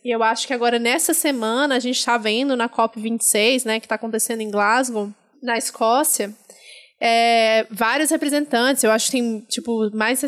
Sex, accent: female, Brazilian